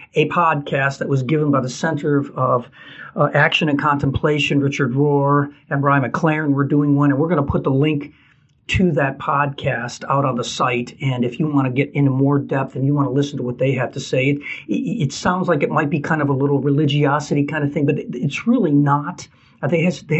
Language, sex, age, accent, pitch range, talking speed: English, male, 50-69, American, 135-155 Hz, 240 wpm